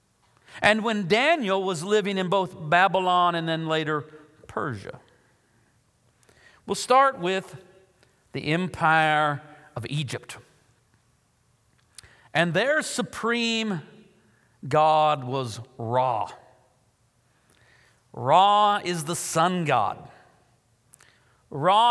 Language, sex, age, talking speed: English, male, 50-69, 85 wpm